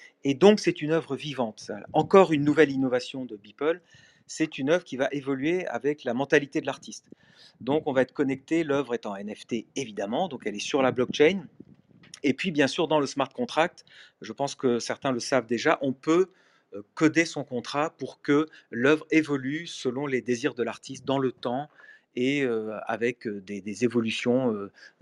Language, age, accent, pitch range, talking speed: French, 40-59, French, 120-155 Hz, 185 wpm